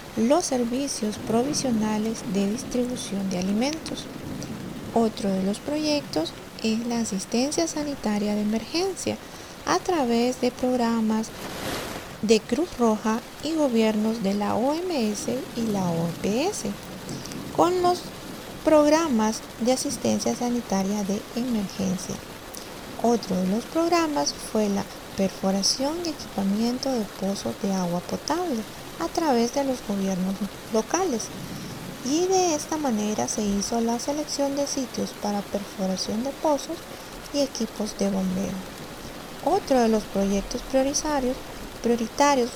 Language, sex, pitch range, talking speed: Spanish, female, 205-280 Hz, 115 wpm